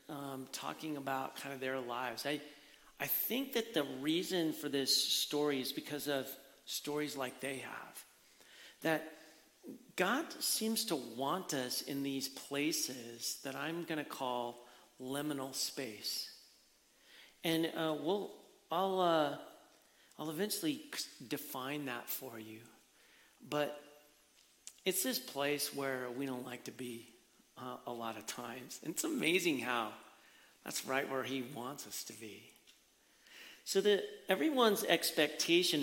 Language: English